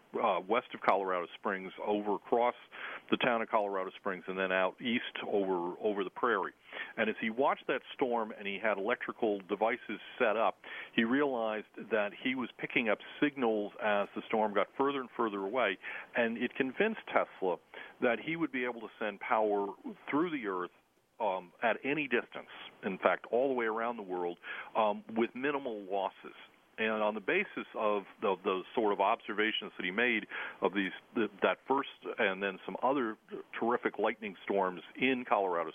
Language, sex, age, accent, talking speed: English, male, 50-69, American, 180 wpm